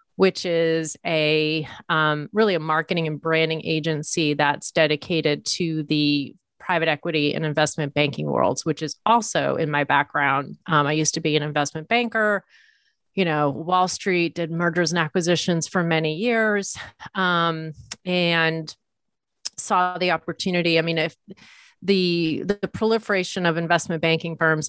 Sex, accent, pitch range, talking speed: female, American, 155-180 Hz, 150 wpm